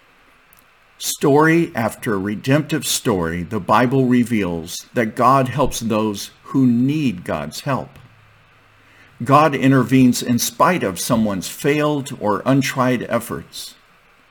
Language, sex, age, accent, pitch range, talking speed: English, male, 50-69, American, 105-130 Hz, 105 wpm